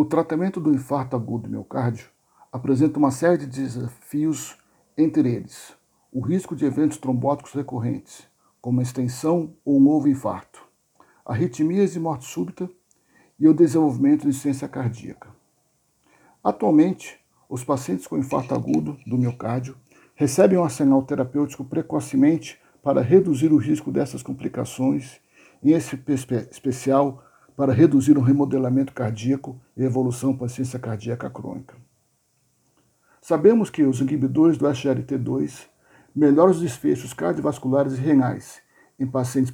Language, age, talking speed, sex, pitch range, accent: Portuguese, 60-79, 130 wpm, male, 130-155 Hz, Brazilian